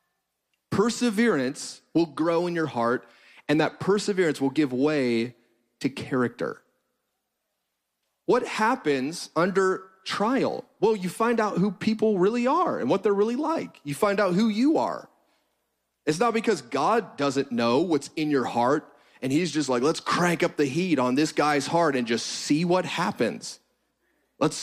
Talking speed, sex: 160 wpm, male